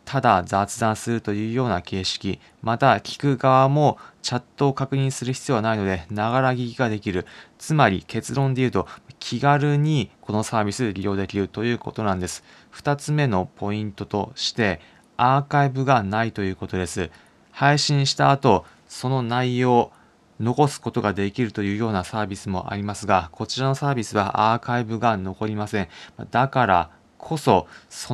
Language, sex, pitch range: Japanese, male, 100-130 Hz